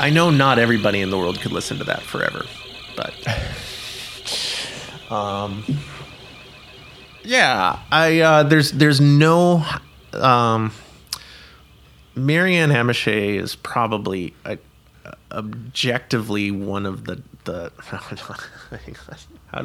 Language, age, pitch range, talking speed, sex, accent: English, 30-49, 100-125 Hz, 100 wpm, male, American